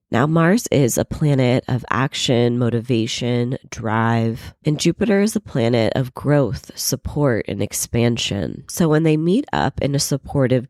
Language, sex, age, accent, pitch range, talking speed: English, female, 20-39, American, 120-150 Hz, 150 wpm